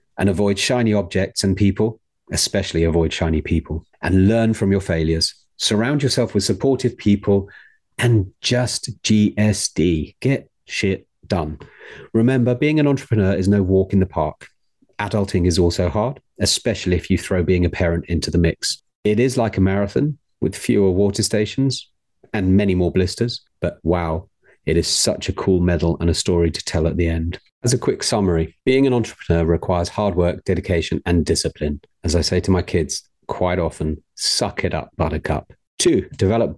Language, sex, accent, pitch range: English, male, British, 85-105 Hz